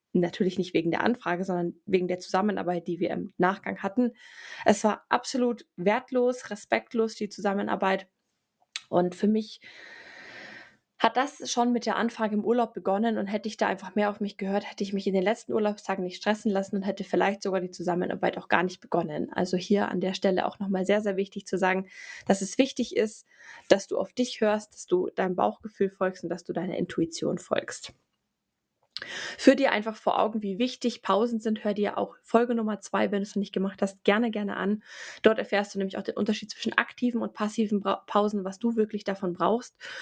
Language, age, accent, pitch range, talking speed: German, 20-39, German, 195-230 Hz, 205 wpm